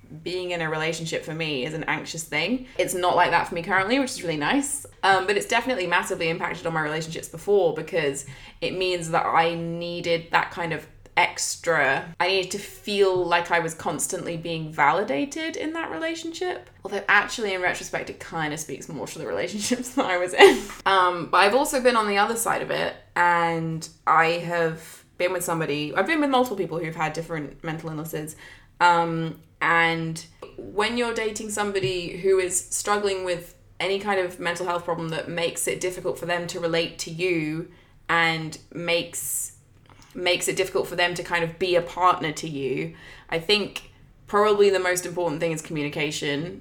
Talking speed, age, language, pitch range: 190 wpm, 20-39, English, 160-185 Hz